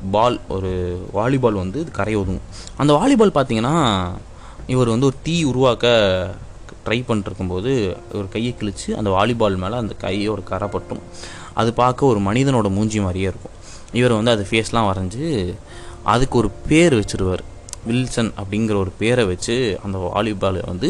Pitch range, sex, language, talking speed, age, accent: 100-125 Hz, male, Tamil, 145 wpm, 20-39, native